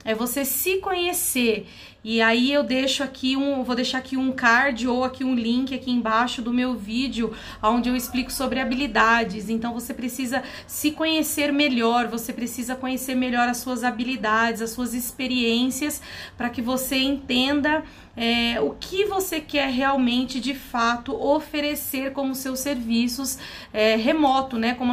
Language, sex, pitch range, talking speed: Portuguese, female, 245-300 Hz, 155 wpm